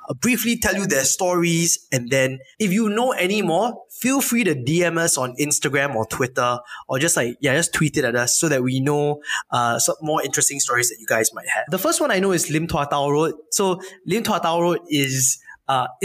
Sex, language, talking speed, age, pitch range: male, English, 220 wpm, 20-39, 135-180 Hz